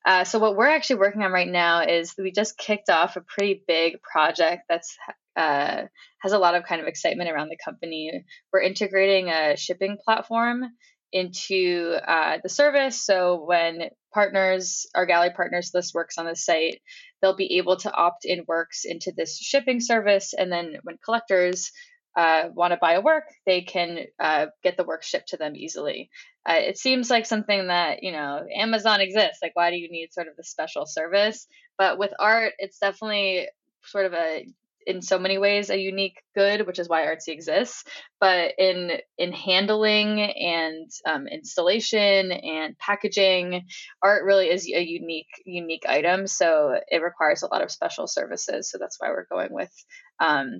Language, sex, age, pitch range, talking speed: English, female, 10-29, 175-210 Hz, 180 wpm